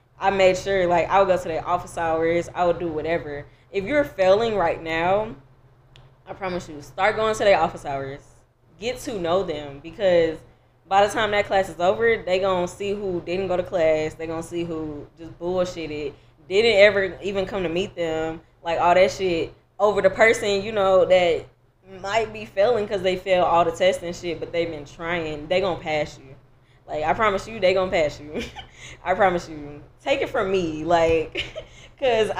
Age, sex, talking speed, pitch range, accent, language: 10-29, female, 205 wpm, 160-195 Hz, American, English